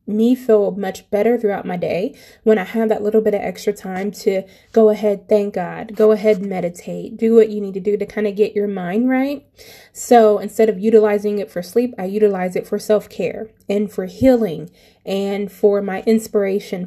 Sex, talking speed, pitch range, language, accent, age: female, 200 wpm, 200-225 Hz, English, American, 20-39